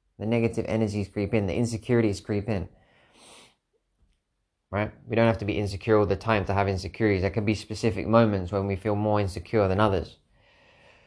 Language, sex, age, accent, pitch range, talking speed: English, male, 20-39, British, 100-115 Hz, 185 wpm